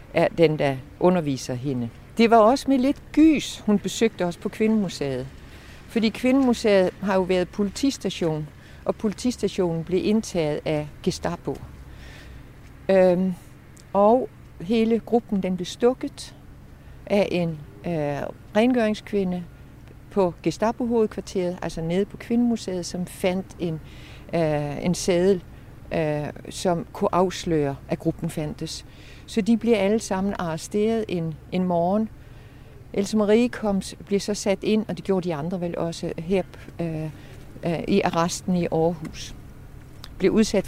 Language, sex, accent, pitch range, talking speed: Danish, female, native, 155-210 Hz, 135 wpm